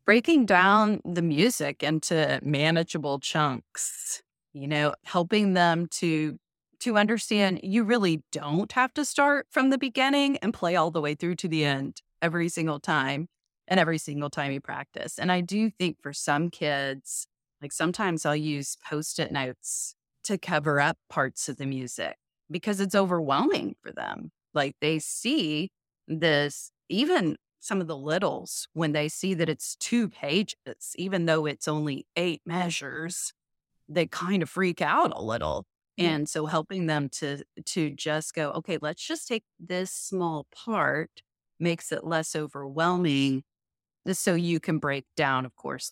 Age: 30-49